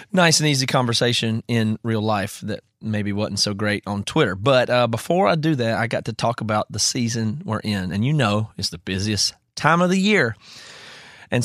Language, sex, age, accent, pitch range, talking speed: English, male, 30-49, American, 105-135 Hz, 210 wpm